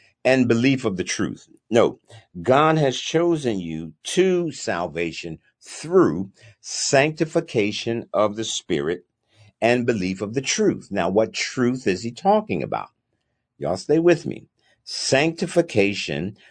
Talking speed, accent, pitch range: 125 wpm, American, 100-140 Hz